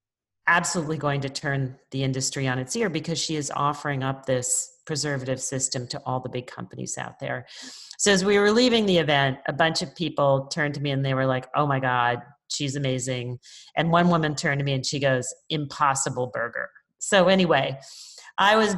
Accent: American